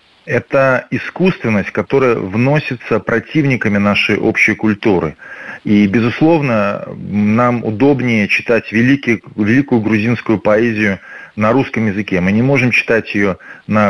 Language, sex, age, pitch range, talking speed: Russian, male, 30-49, 105-130 Hz, 110 wpm